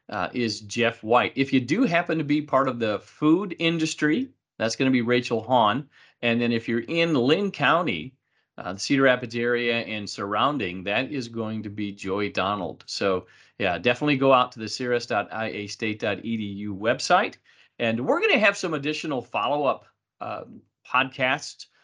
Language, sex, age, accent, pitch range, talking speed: English, male, 40-59, American, 115-145 Hz, 170 wpm